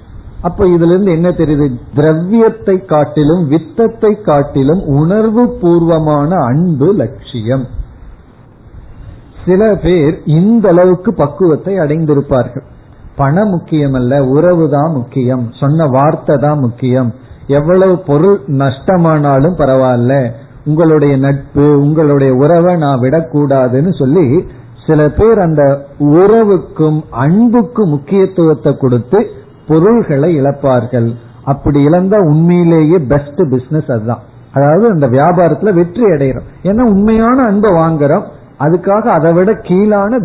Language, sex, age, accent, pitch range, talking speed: Tamil, male, 50-69, native, 135-180 Hz, 90 wpm